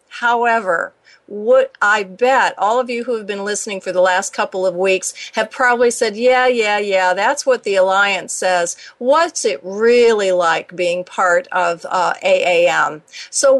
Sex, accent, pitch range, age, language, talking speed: female, American, 210-265 Hz, 50-69, English, 170 wpm